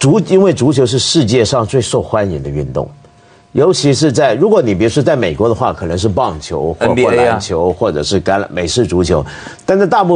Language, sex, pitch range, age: Chinese, male, 100-155 Hz, 50-69